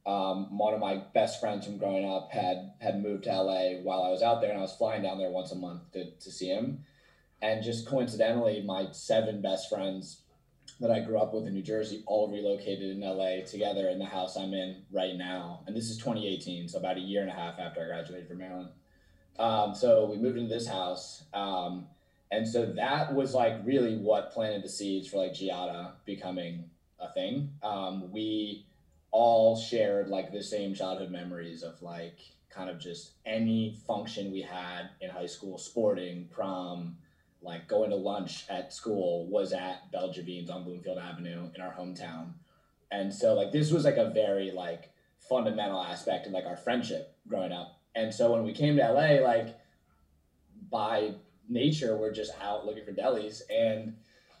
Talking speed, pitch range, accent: 190 wpm, 90-110 Hz, American